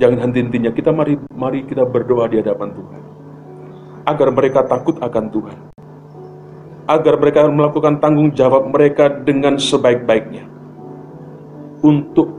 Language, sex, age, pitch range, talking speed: Indonesian, male, 40-59, 115-145 Hz, 115 wpm